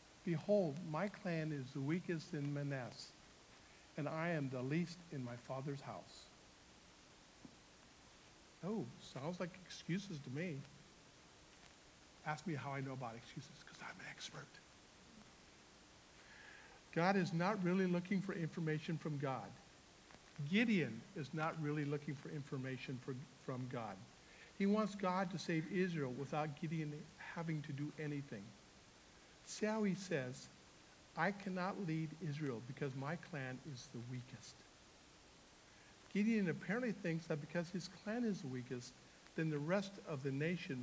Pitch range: 140-180 Hz